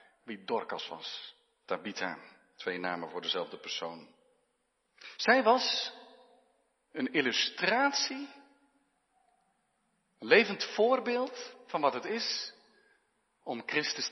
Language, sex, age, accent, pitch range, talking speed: Dutch, male, 50-69, Dutch, 200-280 Hz, 95 wpm